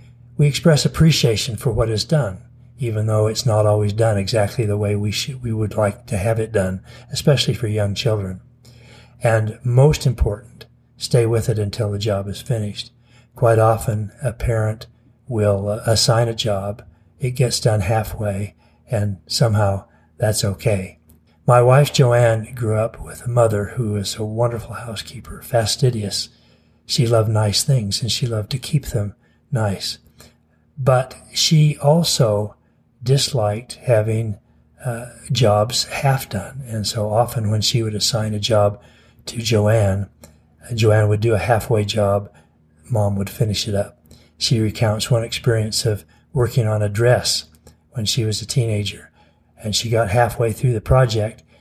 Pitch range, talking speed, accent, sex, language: 105-120 Hz, 155 wpm, American, male, English